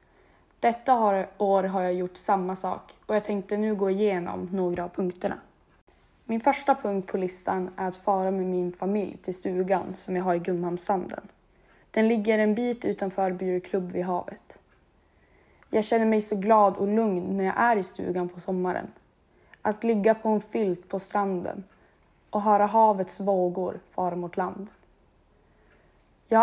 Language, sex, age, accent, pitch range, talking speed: Swedish, female, 20-39, native, 185-210 Hz, 160 wpm